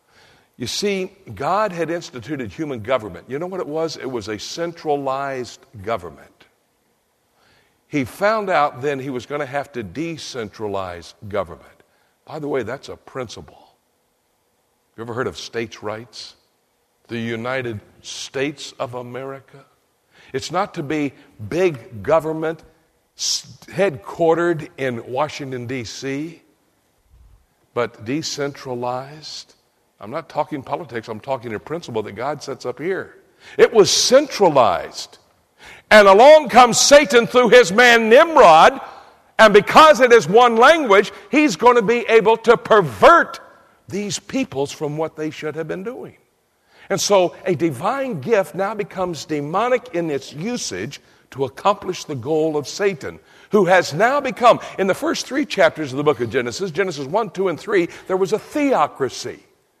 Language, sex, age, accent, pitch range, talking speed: English, male, 60-79, American, 135-205 Hz, 145 wpm